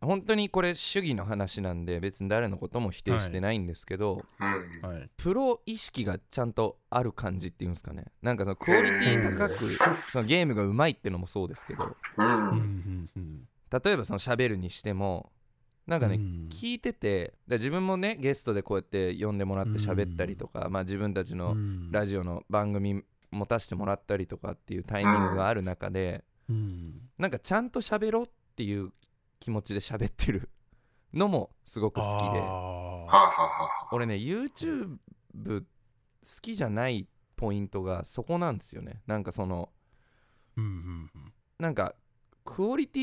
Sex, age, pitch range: male, 20-39, 95-125 Hz